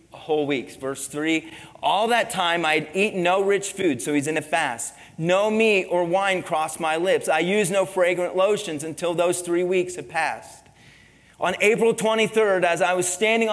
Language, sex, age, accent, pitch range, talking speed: English, male, 30-49, American, 160-200 Hz, 185 wpm